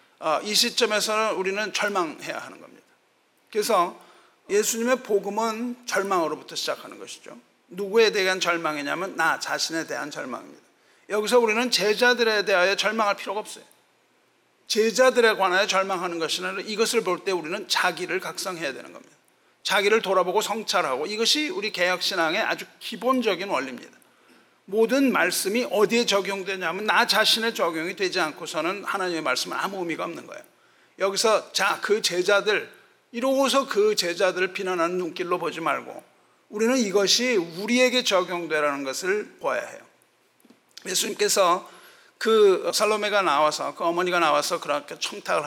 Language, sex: Korean, male